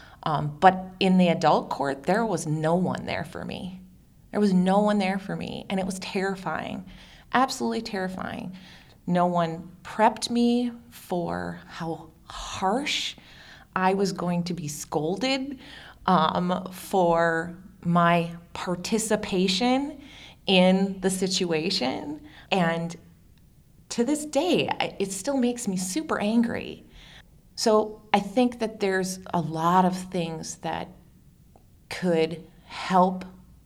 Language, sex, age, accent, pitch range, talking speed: English, female, 20-39, American, 165-210 Hz, 120 wpm